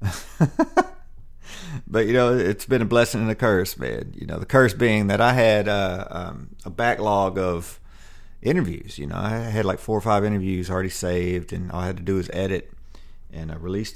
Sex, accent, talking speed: male, American, 205 wpm